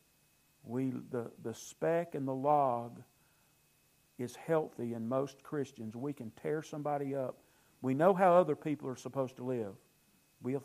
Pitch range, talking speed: 120-140 Hz, 150 wpm